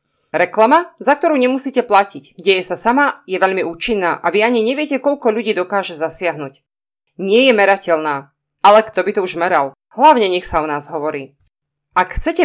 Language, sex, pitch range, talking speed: Slovak, female, 165-235 Hz, 175 wpm